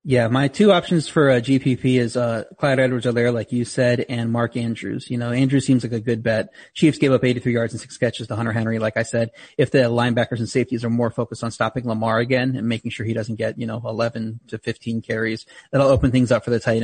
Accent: American